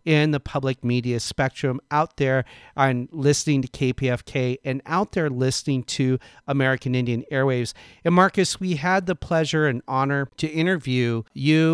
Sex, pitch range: male, 125-160 Hz